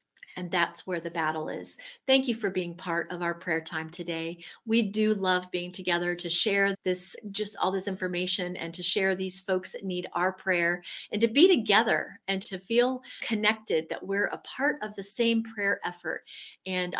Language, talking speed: English, 195 wpm